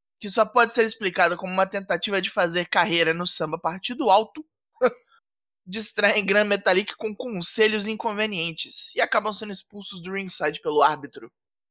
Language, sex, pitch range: Portuguese, male, 180-225 Hz